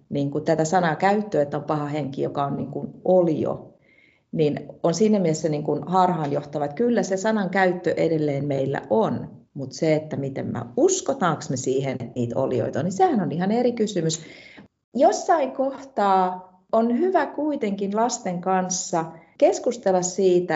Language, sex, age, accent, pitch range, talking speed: Finnish, female, 40-59, native, 145-210 Hz, 160 wpm